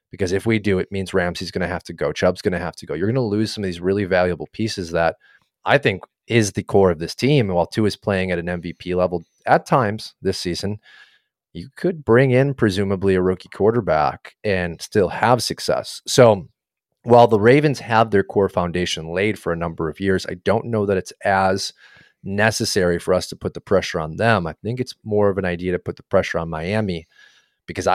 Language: English